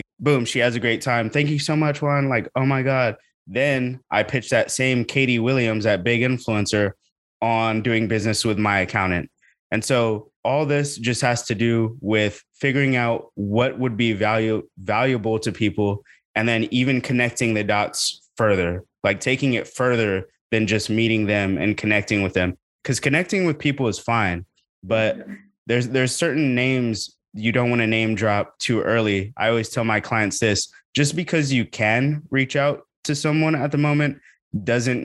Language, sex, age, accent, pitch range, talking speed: English, male, 20-39, American, 105-125 Hz, 180 wpm